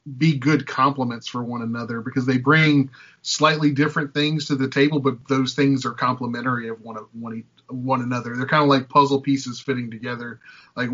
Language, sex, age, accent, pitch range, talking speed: English, male, 30-49, American, 125-140 Hz, 180 wpm